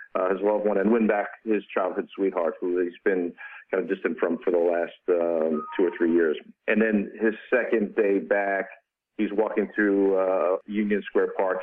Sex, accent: male, American